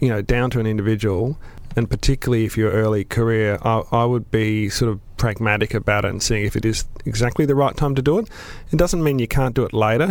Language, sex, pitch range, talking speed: English, male, 105-120 Hz, 245 wpm